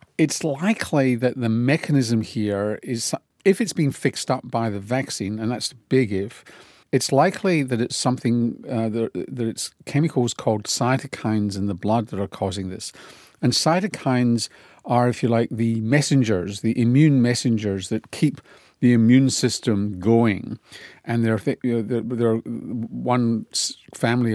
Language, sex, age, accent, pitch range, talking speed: English, male, 40-59, British, 110-135 Hz, 155 wpm